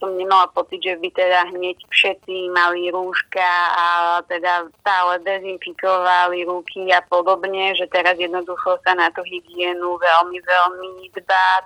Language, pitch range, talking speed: Slovak, 175-190 Hz, 140 wpm